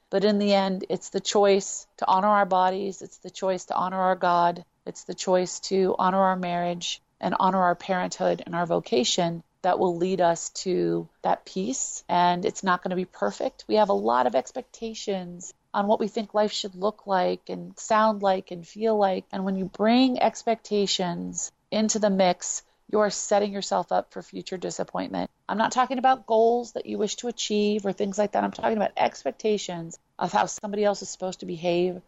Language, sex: English, female